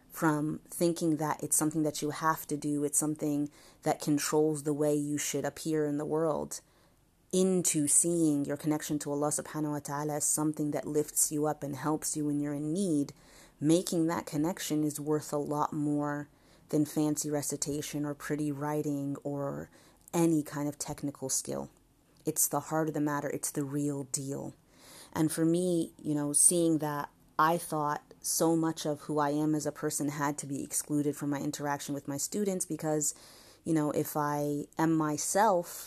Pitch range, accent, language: 145-155 Hz, American, English